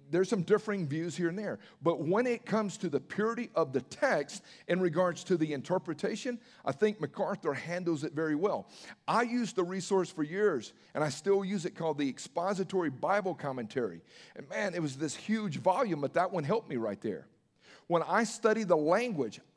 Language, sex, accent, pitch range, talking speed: English, male, American, 160-210 Hz, 195 wpm